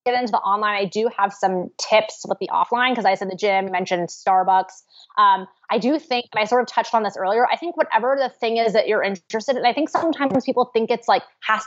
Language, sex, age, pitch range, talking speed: English, female, 20-39, 195-245 Hz, 250 wpm